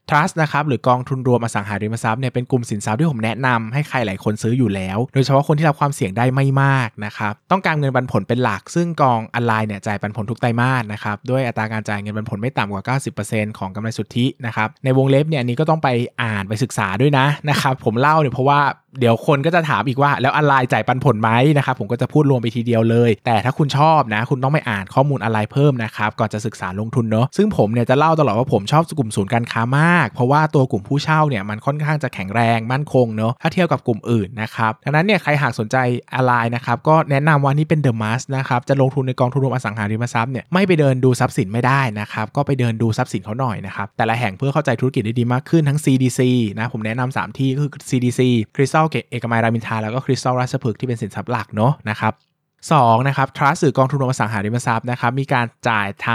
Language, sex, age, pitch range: Thai, male, 20-39, 115-140 Hz